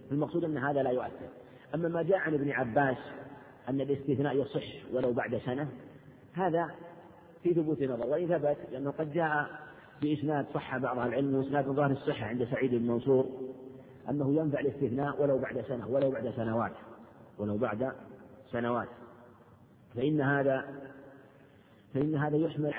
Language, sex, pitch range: Arabic, male, 125-145 Hz